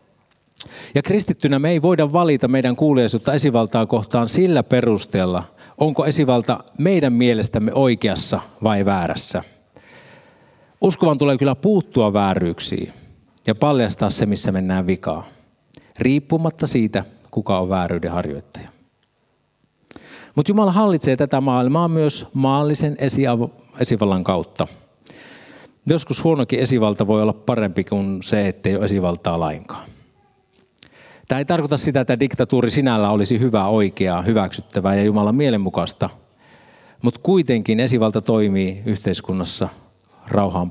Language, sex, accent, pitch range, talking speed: Finnish, male, native, 100-135 Hz, 115 wpm